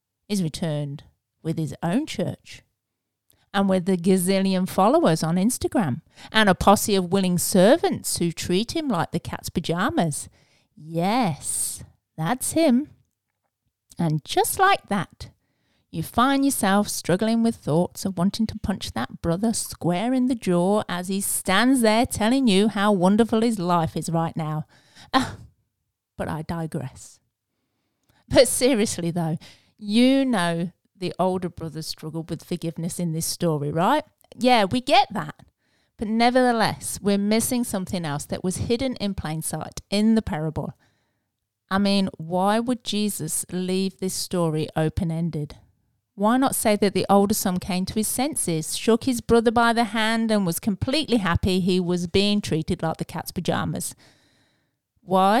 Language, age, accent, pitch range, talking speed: English, 40-59, British, 160-220 Hz, 150 wpm